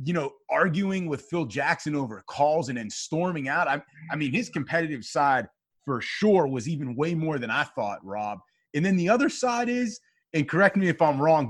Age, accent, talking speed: 30-49, American, 210 wpm